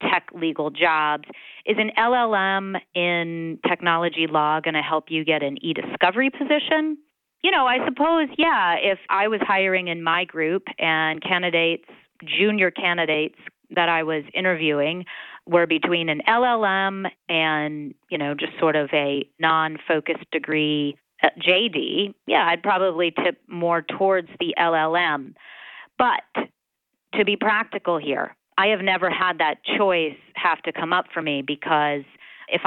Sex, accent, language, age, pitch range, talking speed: female, American, English, 30-49, 155-190 Hz, 145 wpm